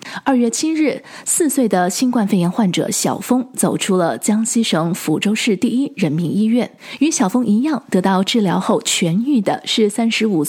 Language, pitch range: Chinese, 185-255 Hz